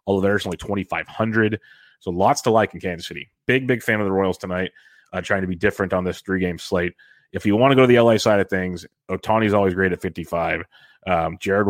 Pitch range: 95-110 Hz